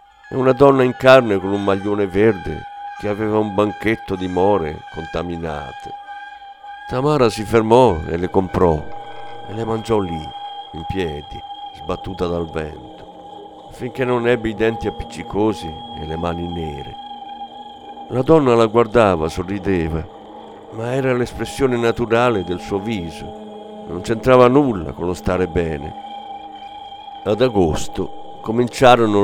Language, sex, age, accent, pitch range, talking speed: Italian, male, 50-69, native, 90-130 Hz, 130 wpm